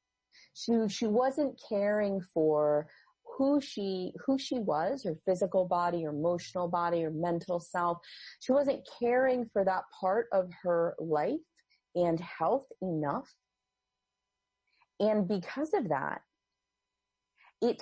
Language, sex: English, female